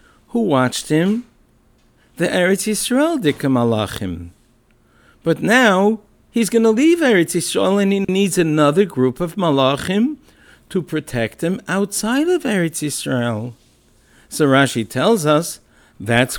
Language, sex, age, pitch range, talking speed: English, male, 60-79, 120-190 Hz, 130 wpm